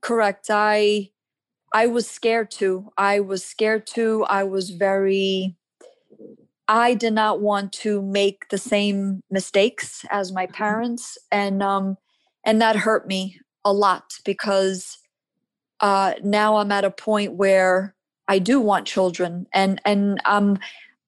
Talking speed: 135 wpm